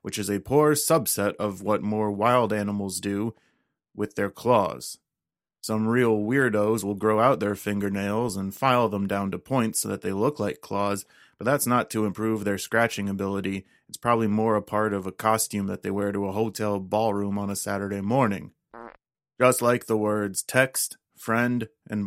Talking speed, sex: 185 wpm, male